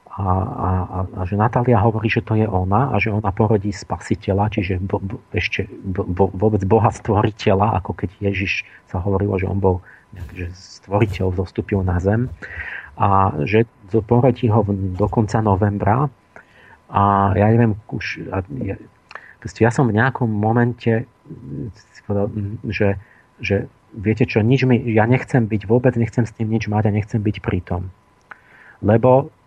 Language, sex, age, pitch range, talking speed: Slovak, male, 40-59, 100-120 Hz, 155 wpm